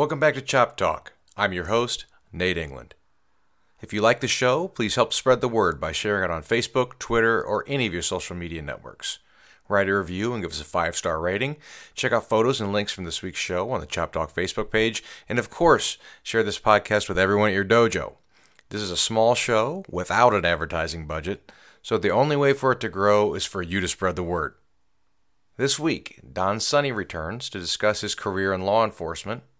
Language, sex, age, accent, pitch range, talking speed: English, male, 40-59, American, 85-110 Hz, 210 wpm